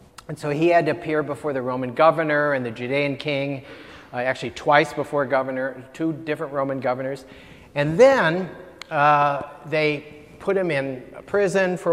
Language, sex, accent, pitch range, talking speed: English, male, American, 130-165 Hz, 160 wpm